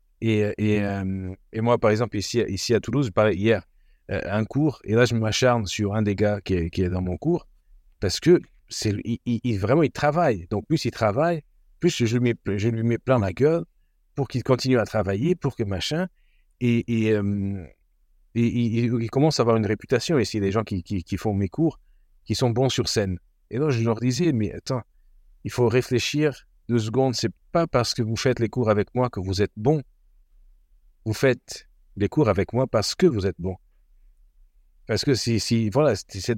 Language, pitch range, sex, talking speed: French, 105-125 Hz, male, 215 wpm